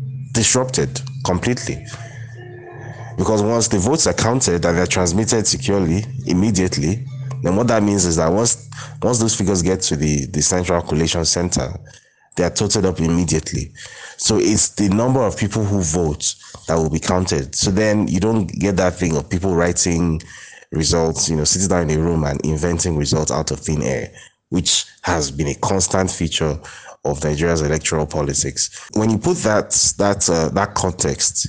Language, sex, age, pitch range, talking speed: English, male, 30-49, 80-105 Hz, 170 wpm